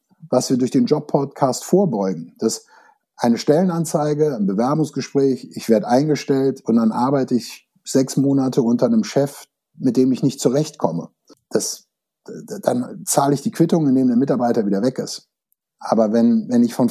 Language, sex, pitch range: German, male, 125-205 Hz